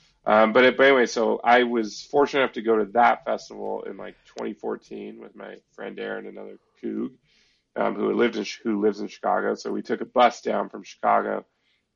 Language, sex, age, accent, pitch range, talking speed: English, male, 30-49, American, 110-135 Hz, 205 wpm